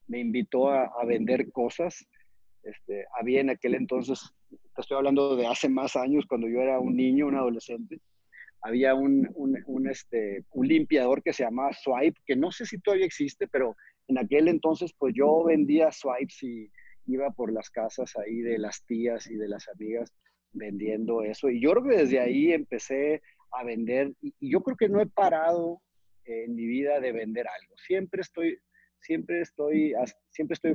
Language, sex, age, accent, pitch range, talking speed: Spanish, male, 40-59, Mexican, 120-165 Hz, 180 wpm